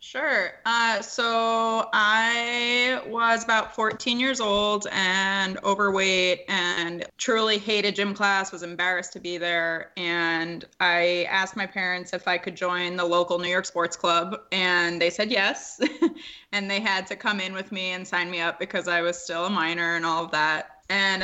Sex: female